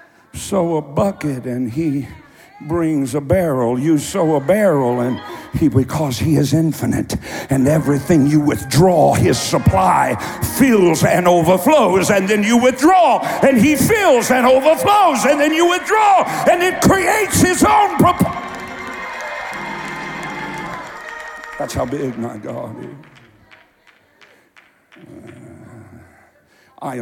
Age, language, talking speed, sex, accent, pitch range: 60-79, English, 115 wpm, male, American, 110-160 Hz